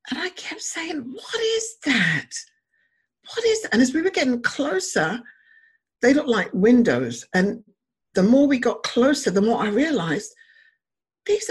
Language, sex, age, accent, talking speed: English, female, 50-69, British, 155 wpm